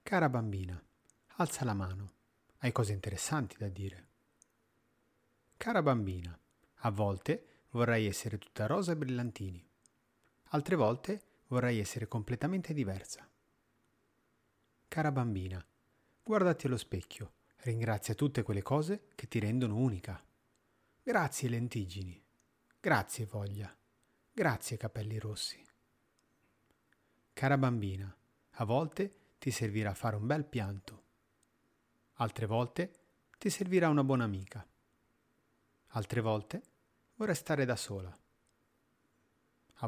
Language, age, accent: Italian, 40-59, native